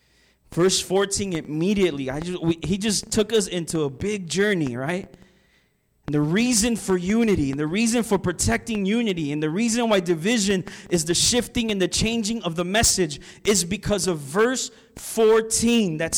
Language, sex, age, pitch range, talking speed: English, male, 30-49, 125-180 Hz, 170 wpm